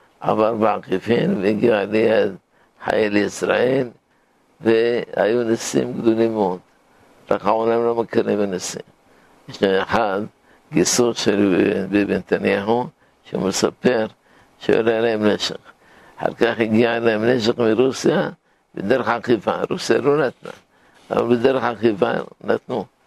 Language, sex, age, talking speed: Hebrew, male, 60-79, 105 wpm